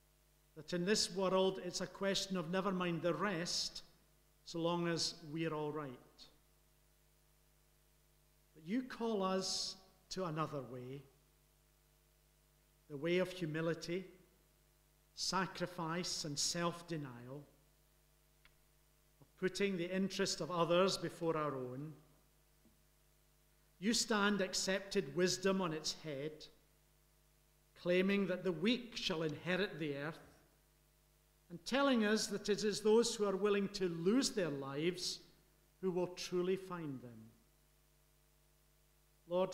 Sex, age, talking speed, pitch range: male, 50-69, 115 wpm, 155-190 Hz